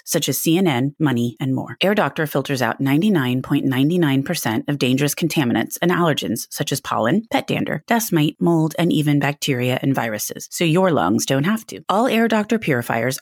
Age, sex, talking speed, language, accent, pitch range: 30-49, female, 175 wpm, English, American, 140-185 Hz